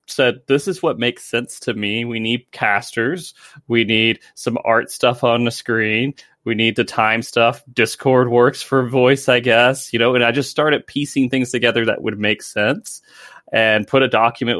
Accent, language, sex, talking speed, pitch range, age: American, English, male, 195 wpm, 110-130 Hz, 20-39